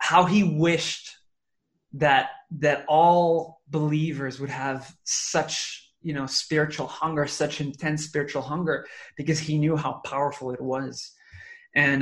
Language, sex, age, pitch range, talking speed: English, male, 20-39, 145-170 Hz, 130 wpm